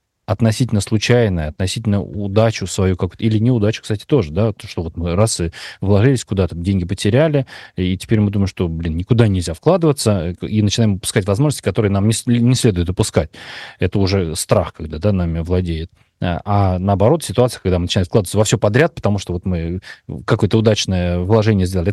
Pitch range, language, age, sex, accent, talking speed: 90-115 Hz, Russian, 30-49, male, native, 175 wpm